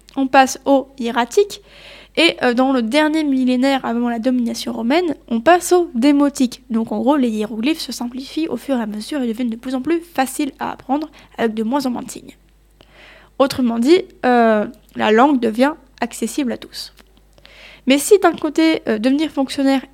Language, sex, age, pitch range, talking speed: French, female, 20-39, 235-285 Hz, 185 wpm